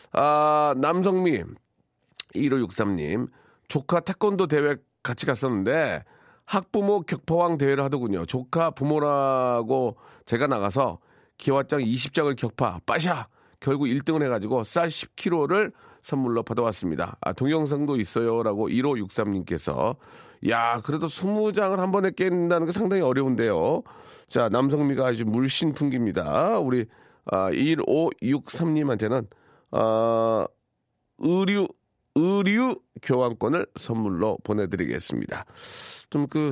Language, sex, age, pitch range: Korean, male, 40-59, 115-160 Hz